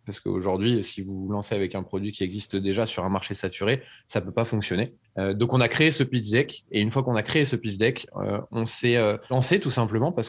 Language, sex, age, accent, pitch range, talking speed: French, male, 20-39, French, 105-130 Hz, 270 wpm